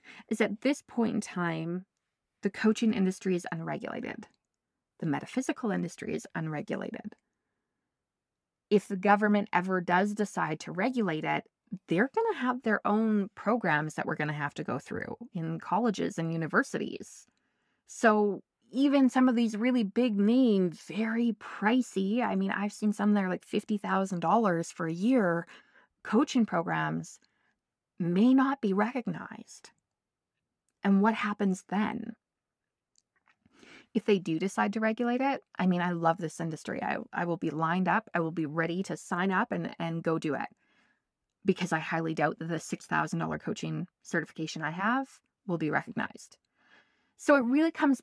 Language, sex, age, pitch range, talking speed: English, female, 20-39, 175-230 Hz, 155 wpm